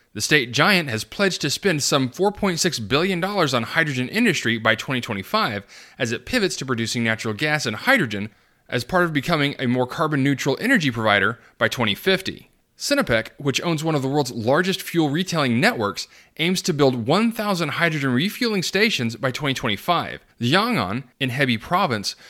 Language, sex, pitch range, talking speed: English, male, 125-180 Hz, 160 wpm